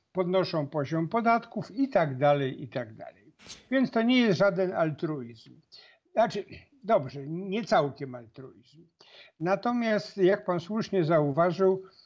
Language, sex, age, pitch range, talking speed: Polish, male, 50-69, 155-200 Hz, 125 wpm